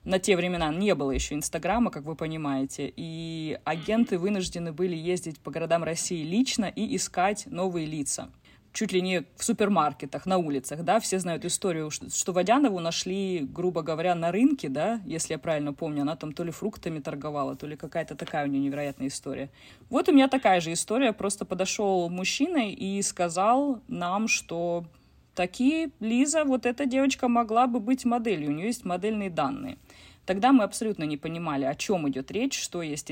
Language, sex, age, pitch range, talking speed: Russian, female, 20-39, 165-215 Hz, 180 wpm